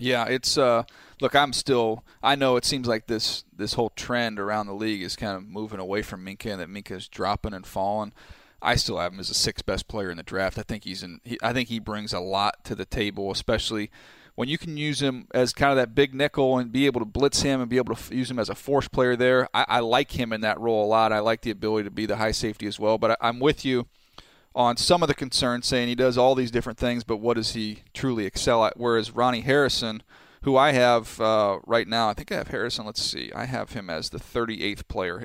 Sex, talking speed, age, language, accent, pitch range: male, 265 wpm, 30-49, English, American, 105-125 Hz